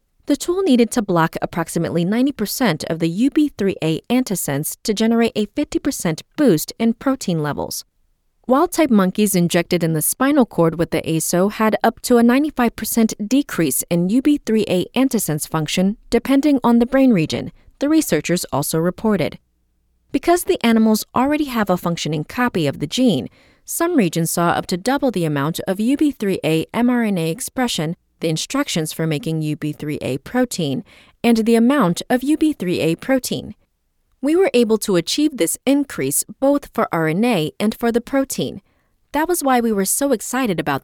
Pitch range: 165-260 Hz